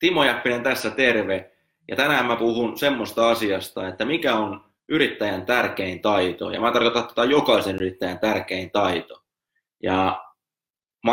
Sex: male